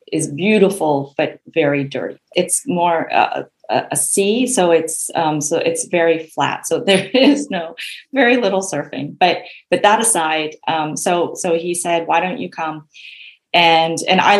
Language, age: English, 30-49